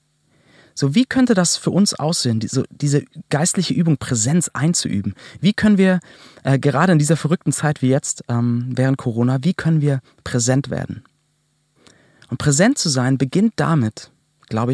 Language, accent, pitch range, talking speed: German, German, 130-160 Hz, 155 wpm